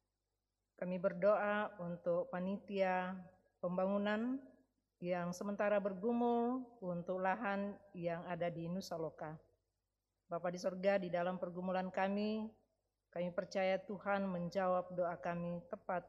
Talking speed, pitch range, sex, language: 105 wpm, 175-205 Hz, female, Indonesian